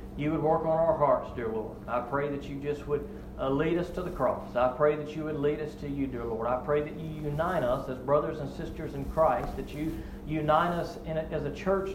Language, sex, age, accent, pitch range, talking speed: English, male, 40-59, American, 120-150 Hz, 260 wpm